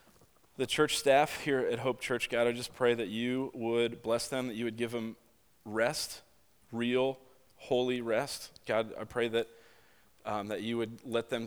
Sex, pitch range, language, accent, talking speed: male, 115-140 Hz, English, American, 185 wpm